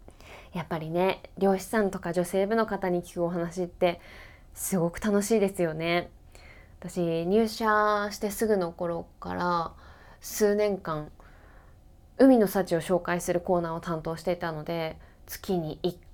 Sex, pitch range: female, 165-220 Hz